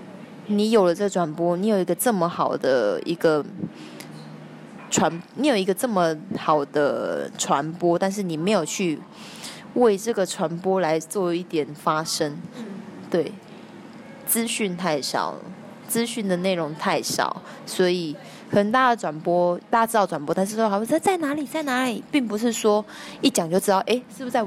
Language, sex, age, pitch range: Chinese, female, 20-39, 170-220 Hz